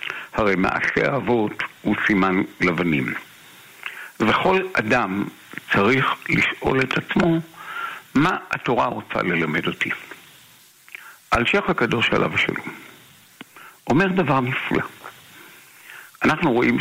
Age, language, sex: 60-79, Hebrew, male